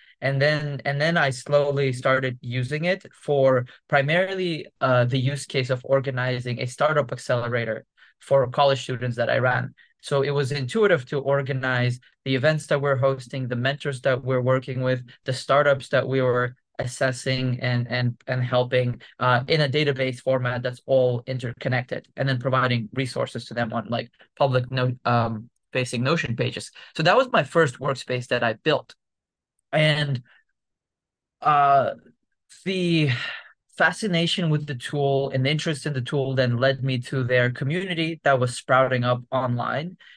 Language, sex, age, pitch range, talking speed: English, male, 20-39, 125-145 Hz, 160 wpm